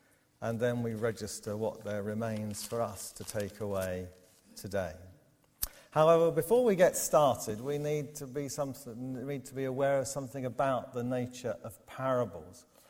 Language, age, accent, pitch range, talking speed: English, 50-69, British, 110-135 Hz, 165 wpm